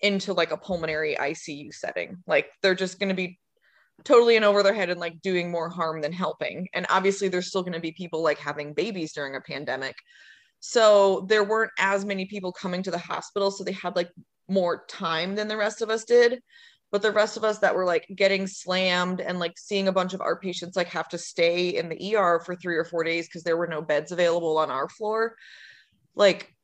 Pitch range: 170-205 Hz